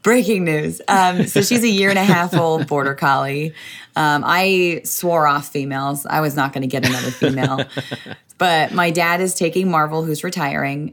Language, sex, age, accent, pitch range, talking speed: English, female, 20-39, American, 140-180 Hz, 185 wpm